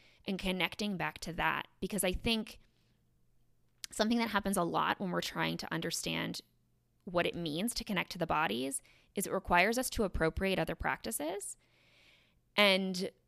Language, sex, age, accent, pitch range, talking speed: English, female, 20-39, American, 160-195 Hz, 160 wpm